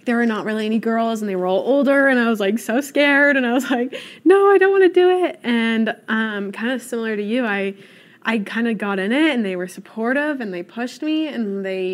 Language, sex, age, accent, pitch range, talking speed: English, female, 20-39, American, 195-245 Hz, 260 wpm